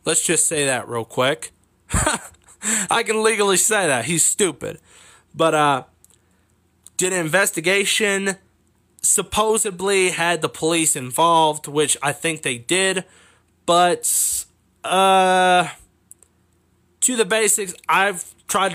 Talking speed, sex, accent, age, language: 110 wpm, male, American, 20-39, English